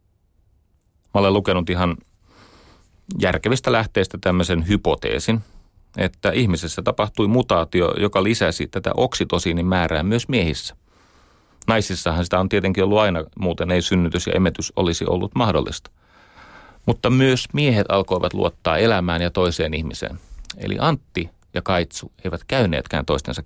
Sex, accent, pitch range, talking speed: male, native, 85-100 Hz, 125 wpm